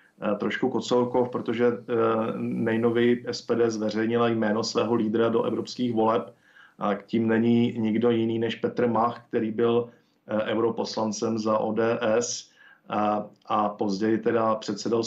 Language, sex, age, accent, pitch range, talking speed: Czech, male, 50-69, native, 110-115 Hz, 120 wpm